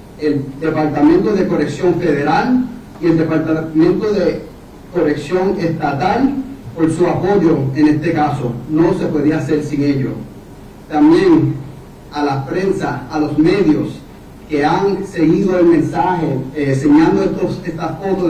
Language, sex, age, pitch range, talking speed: English, male, 40-59, 150-175 Hz, 130 wpm